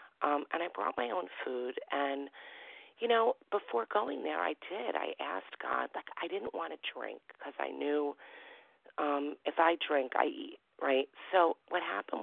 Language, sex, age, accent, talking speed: English, female, 40-59, American, 180 wpm